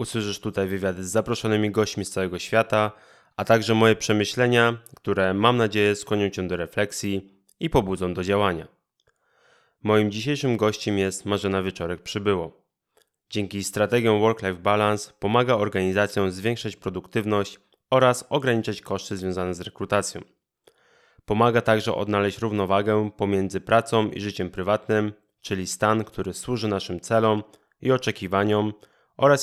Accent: native